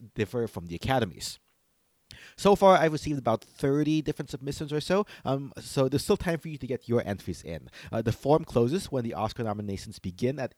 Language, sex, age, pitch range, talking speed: English, male, 30-49, 100-140 Hz, 205 wpm